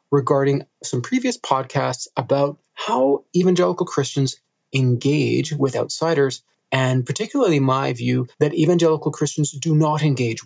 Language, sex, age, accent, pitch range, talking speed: English, male, 30-49, American, 120-150 Hz, 120 wpm